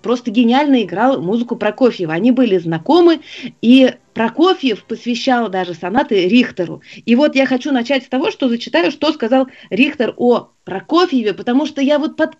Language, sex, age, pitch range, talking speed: Russian, female, 30-49, 215-295 Hz, 160 wpm